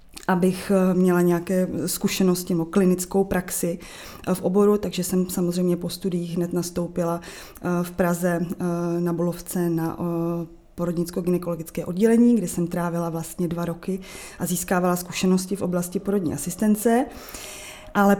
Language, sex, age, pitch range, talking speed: Czech, female, 20-39, 175-195 Hz, 120 wpm